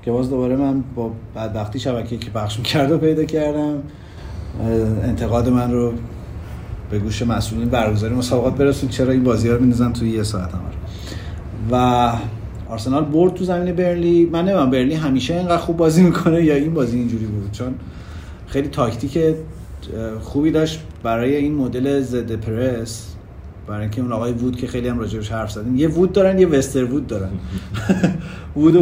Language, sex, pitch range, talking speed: Persian, male, 110-140 Hz, 160 wpm